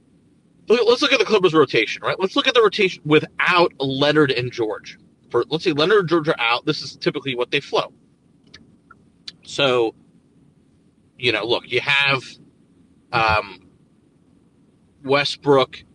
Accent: American